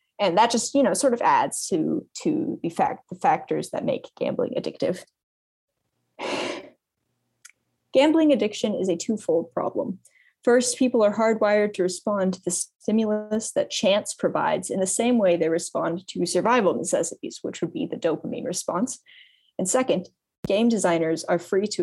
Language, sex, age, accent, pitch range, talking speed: English, female, 20-39, American, 175-230 Hz, 160 wpm